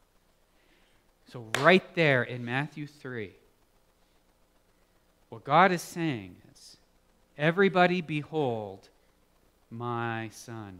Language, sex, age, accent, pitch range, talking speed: English, male, 40-59, American, 125-185 Hz, 85 wpm